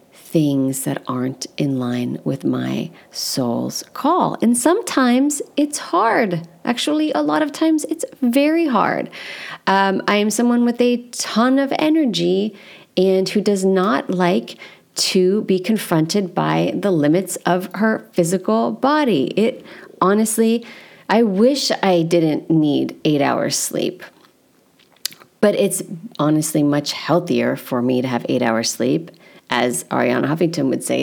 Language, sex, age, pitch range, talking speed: English, female, 30-49, 155-240 Hz, 140 wpm